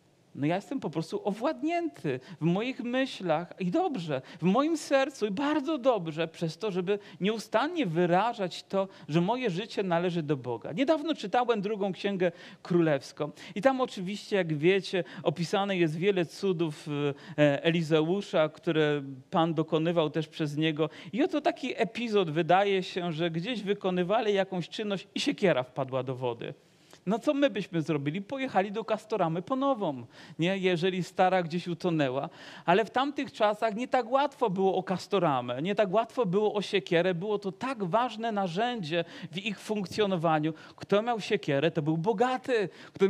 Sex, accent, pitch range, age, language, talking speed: male, native, 165-230 Hz, 40-59, Polish, 155 wpm